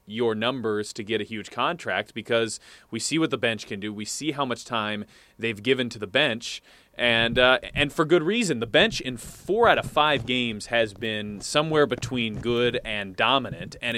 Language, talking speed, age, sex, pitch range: English, 200 wpm, 20-39, male, 105-140 Hz